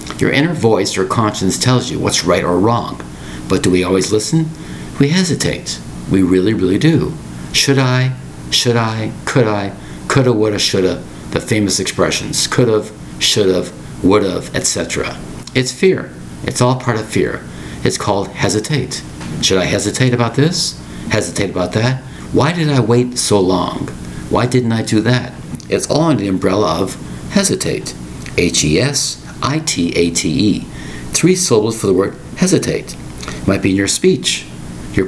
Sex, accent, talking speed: male, American, 150 wpm